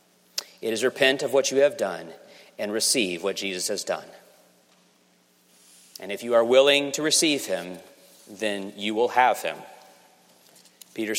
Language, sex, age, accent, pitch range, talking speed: English, male, 40-59, American, 100-135 Hz, 150 wpm